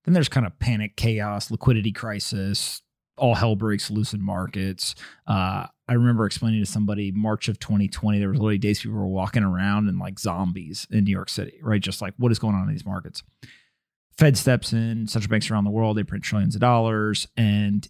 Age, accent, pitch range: 30-49, American, 100-120 Hz